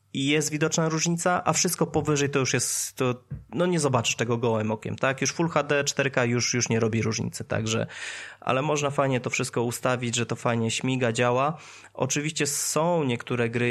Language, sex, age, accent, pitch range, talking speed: Polish, male, 20-39, native, 115-135 Hz, 190 wpm